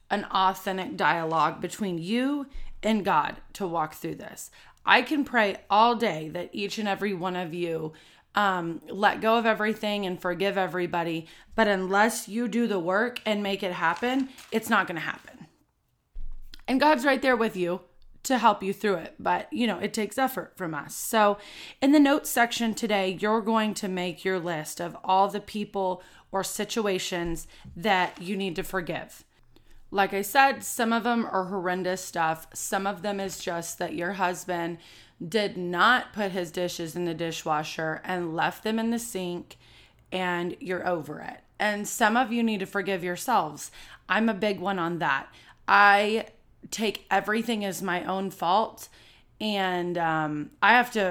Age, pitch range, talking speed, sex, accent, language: 30-49, 175-215 Hz, 175 wpm, female, American, English